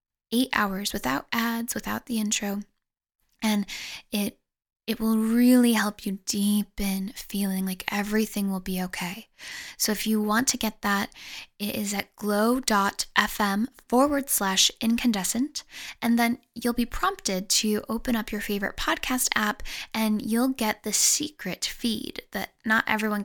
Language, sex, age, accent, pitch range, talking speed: English, female, 10-29, American, 205-240 Hz, 145 wpm